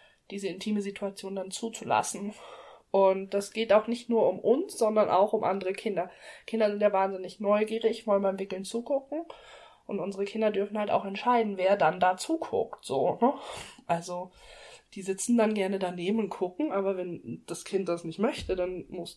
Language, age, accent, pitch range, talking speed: German, 20-39, German, 190-225 Hz, 170 wpm